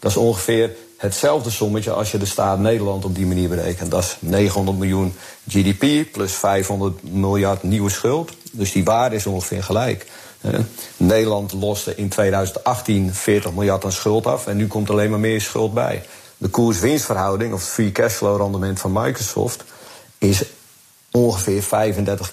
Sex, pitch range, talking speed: male, 95-110 Hz, 160 wpm